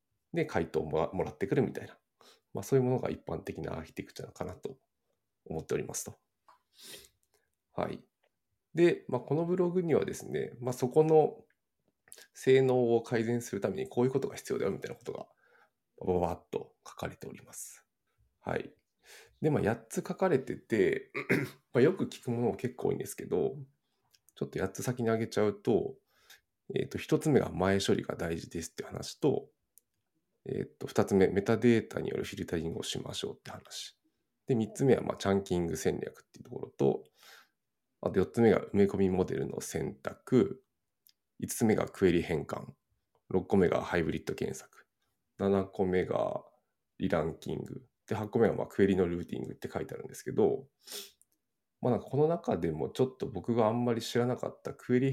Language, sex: Japanese, male